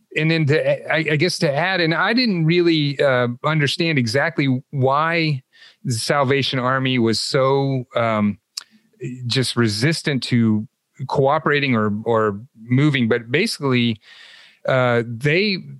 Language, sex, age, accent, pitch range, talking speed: English, male, 40-59, American, 115-140 Hz, 120 wpm